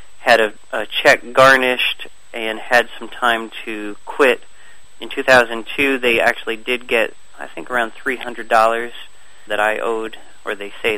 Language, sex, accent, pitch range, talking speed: English, male, American, 110-130 Hz, 150 wpm